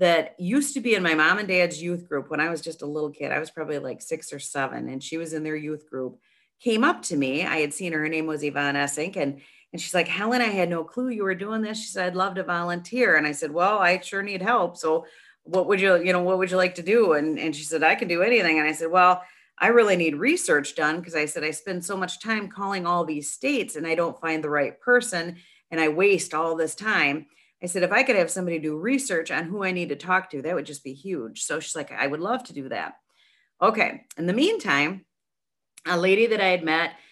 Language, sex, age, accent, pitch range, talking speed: English, female, 40-59, American, 155-190 Hz, 260 wpm